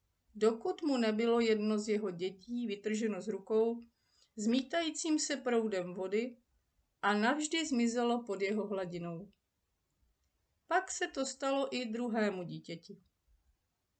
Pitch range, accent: 185-250 Hz, native